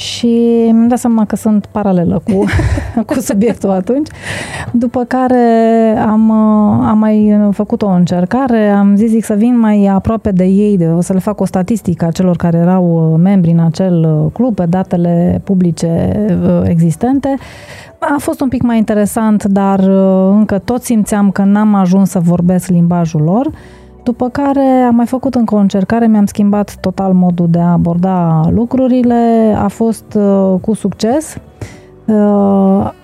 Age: 30-49